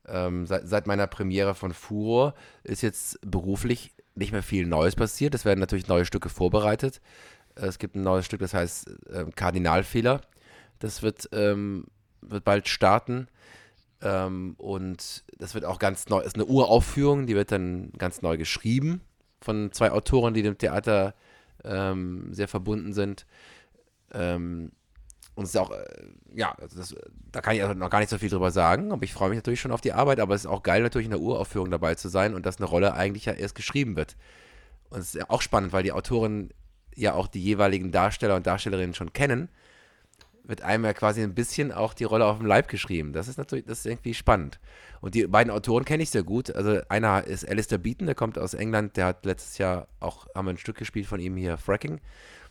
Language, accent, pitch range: English, German, 95-110 Hz